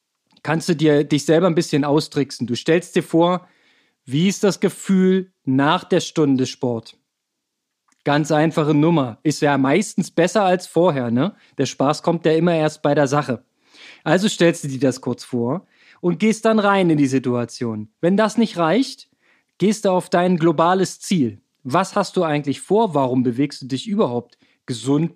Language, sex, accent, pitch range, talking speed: German, male, German, 145-190 Hz, 175 wpm